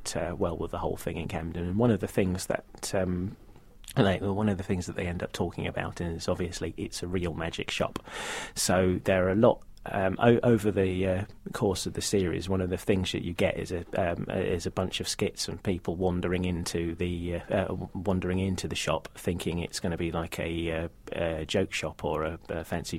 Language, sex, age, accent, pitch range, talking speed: English, male, 30-49, British, 85-95 Hz, 230 wpm